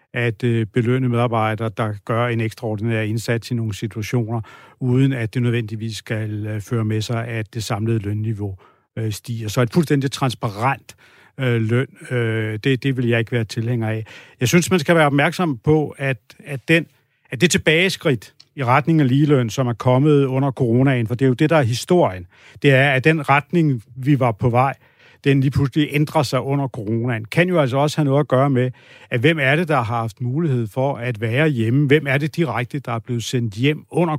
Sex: male